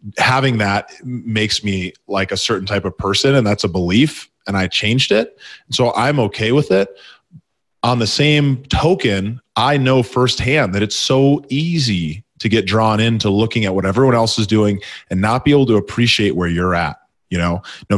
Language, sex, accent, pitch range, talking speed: English, male, American, 100-120 Hz, 195 wpm